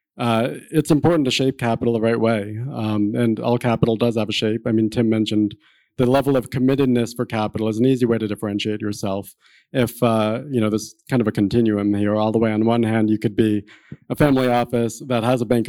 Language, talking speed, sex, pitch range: English, 230 wpm, male, 110-125 Hz